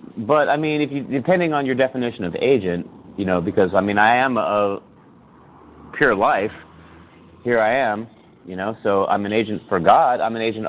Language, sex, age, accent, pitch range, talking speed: English, male, 30-49, American, 105-135 Hz, 195 wpm